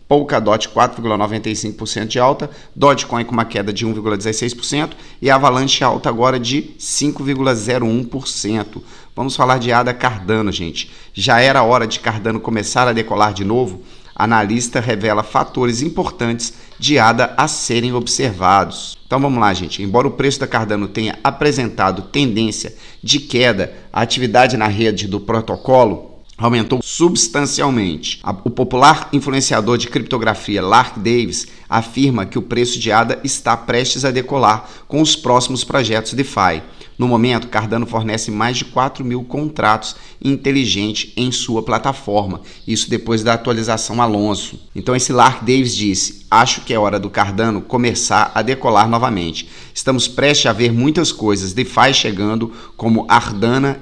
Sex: male